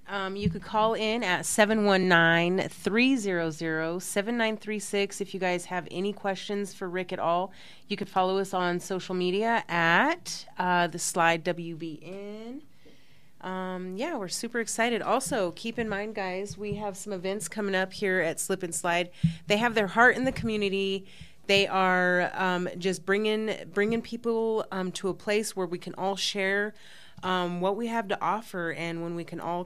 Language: English